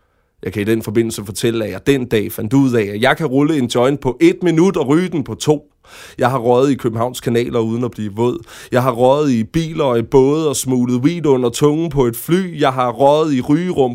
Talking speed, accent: 250 wpm, native